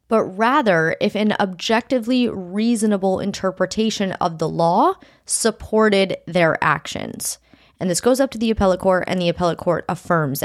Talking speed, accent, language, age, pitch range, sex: 150 wpm, American, English, 20-39, 165-215 Hz, female